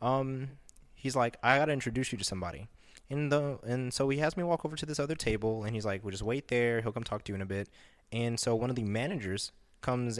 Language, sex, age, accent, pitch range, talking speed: English, male, 20-39, American, 100-130 Hz, 265 wpm